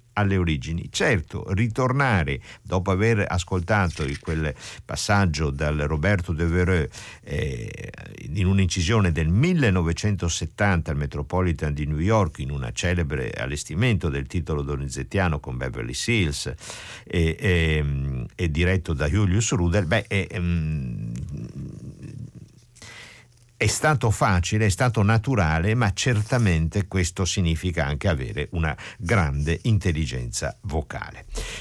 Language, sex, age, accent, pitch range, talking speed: Italian, male, 60-79, native, 80-110 Hz, 110 wpm